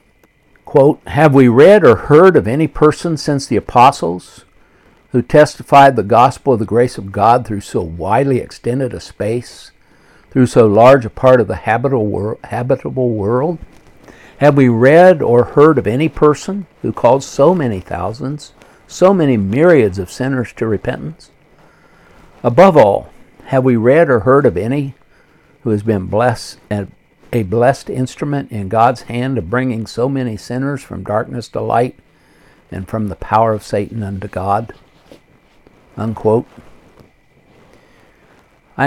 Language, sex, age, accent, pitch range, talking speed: English, male, 60-79, American, 105-135 Hz, 145 wpm